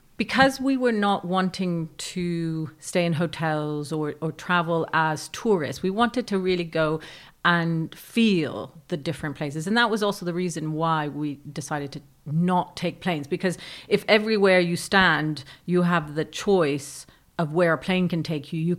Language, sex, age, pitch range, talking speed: English, female, 40-59, 155-185 Hz, 170 wpm